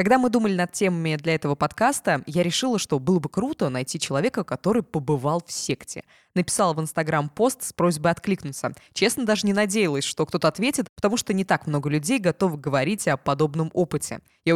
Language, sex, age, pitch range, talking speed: Russian, female, 20-39, 150-190 Hz, 190 wpm